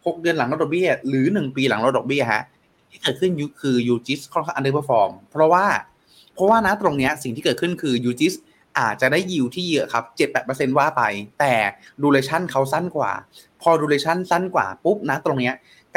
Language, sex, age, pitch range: Thai, male, 20-39, 125-170 Hz